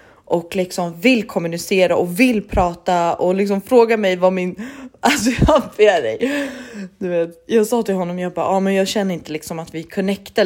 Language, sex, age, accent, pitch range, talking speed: Swedish, female, 30-49, native, 175-235 Hz, 195 wpm